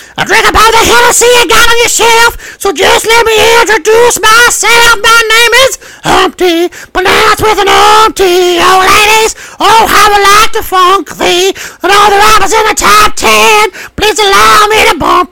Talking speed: 205 wpm